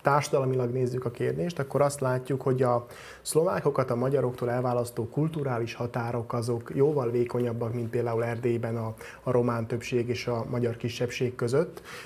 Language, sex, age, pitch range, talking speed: Hungarian, male, 30-49, 120-135 Hz, 150 wpm